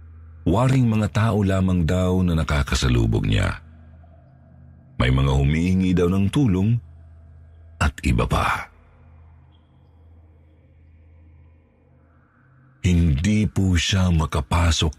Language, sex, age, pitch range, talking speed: Filipino, male, 50-69, 75-90 Hz, 85 wpm